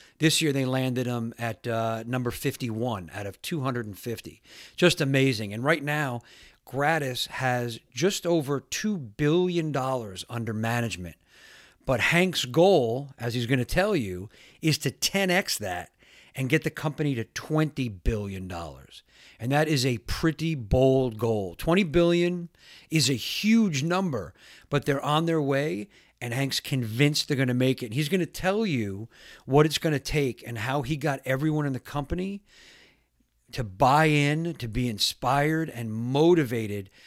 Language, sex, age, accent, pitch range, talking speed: English, male, 50-69, American, 120-155 Hz, 155 wpm